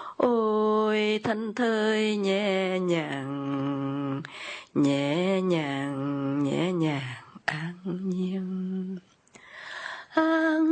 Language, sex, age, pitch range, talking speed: Vietnamese, female, 30-49, 185-275 Hz, 65 wpm